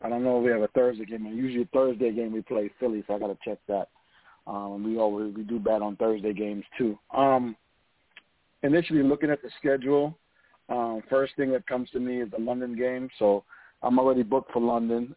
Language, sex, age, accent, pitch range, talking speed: English, male, 40-59, American, 110-130 Hz, 215 wpm